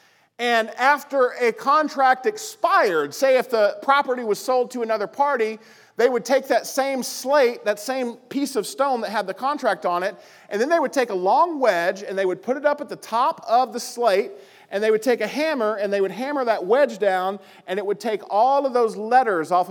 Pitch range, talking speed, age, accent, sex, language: 185-260 Hz, 220 wpm, 40-59, American, male, English